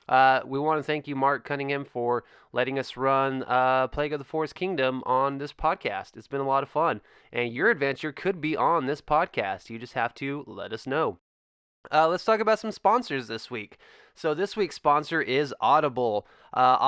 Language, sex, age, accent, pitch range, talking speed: English, male, 20-39, American, 130-160 Hz, 205 wpm